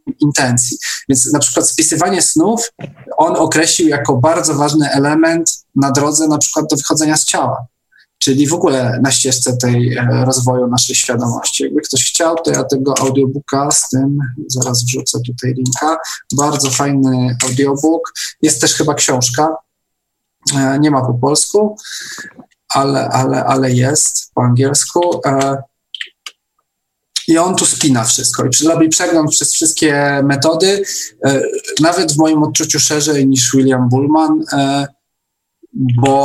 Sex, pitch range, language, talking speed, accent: male, 130-155 Hz, Polish, 130 wpm, native